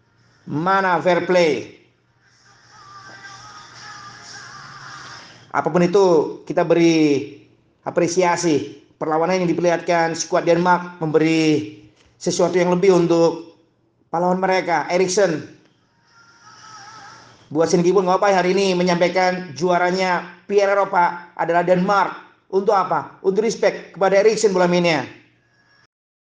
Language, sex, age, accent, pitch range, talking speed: Indonesian, male, 40-59, native, 155-185 Hz, 90 wpm